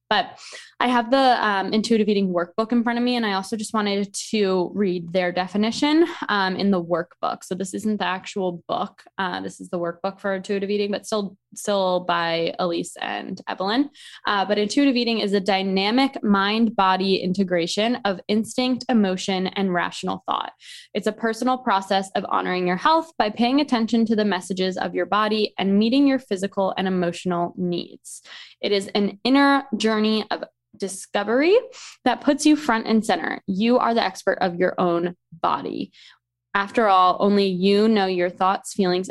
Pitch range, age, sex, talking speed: 185-225 Hz, 10-29, female, 175 wpm